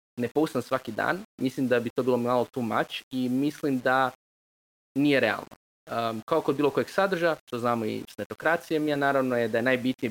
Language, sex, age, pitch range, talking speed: Croatian, male, 20-39, 120-145 Hz, 200 wpm